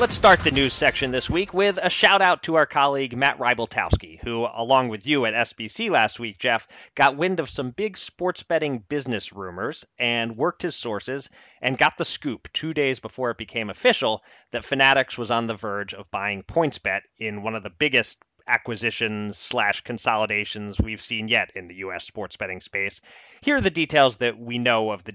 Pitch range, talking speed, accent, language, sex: 105-140 Hz, 200 wpm, American, English, male